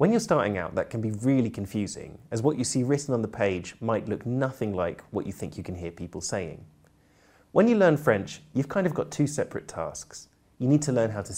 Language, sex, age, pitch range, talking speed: English, male, 20-39, 100-150 Hz, 245 wpm